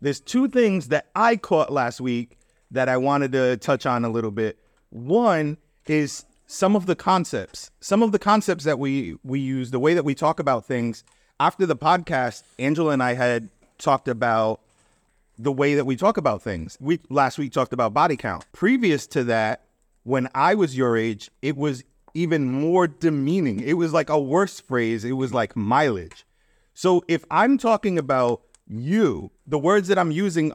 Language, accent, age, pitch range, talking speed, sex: English, American, 30-49, 135-205 Hz, 185 wpm, male